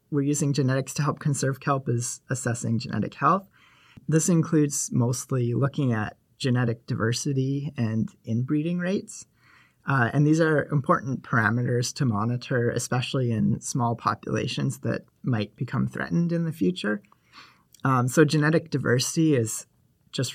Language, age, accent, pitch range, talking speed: English, 30-49, American, 120-150 Hz, 135 wpm